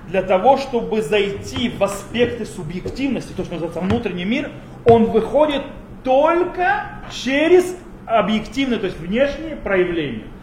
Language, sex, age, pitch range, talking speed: Russian, male, 30-49, 180-250 Hz, 120 wpm